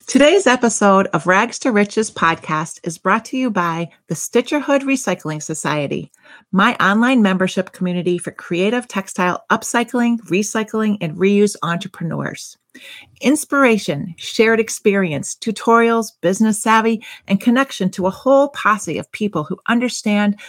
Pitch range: 175-235 Hz